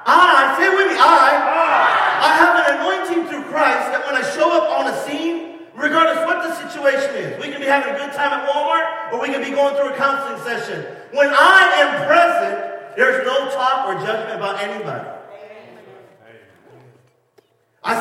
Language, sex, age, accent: English, male, 40-59, American